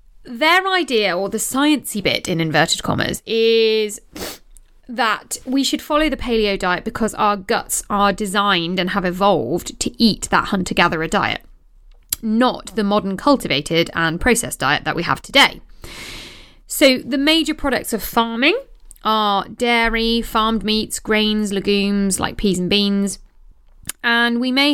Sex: female